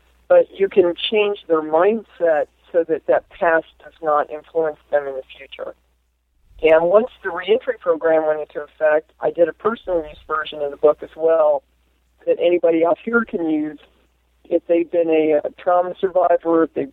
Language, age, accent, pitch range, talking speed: English, 50-69, American, 150-180 Hz, 180 wpm